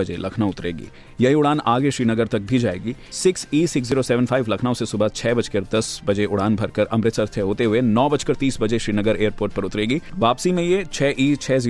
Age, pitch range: 30-49, 105-130 Hz